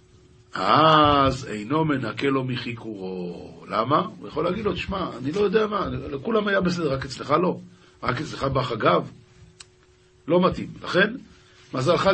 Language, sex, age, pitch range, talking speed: Hebrew, male, 50-69, 135-195 Hz, 140 wpm